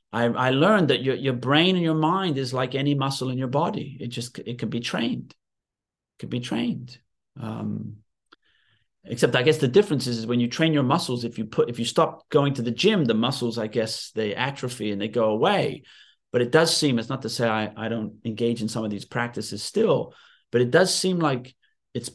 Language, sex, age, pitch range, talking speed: English, male, 40-59, 115-160 Hz, 230 wpm